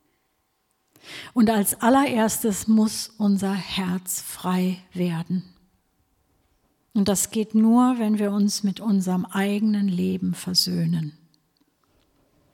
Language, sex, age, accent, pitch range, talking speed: German, female, 50-69, German, 175-220 Hz, 95 wpm